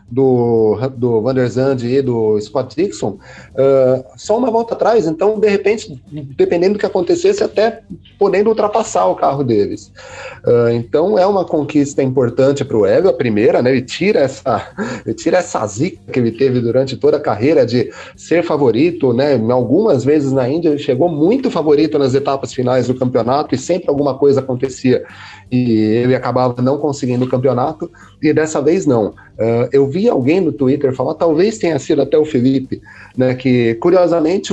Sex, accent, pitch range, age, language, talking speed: male, Brazilian, 125-155 Hz, 30-49, Portuguese, 175 wpm